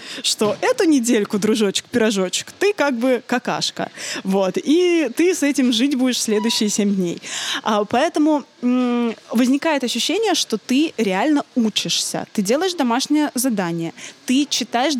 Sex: female